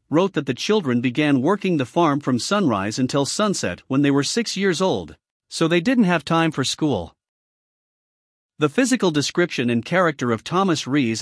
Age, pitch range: 50-69, 125-185 Hz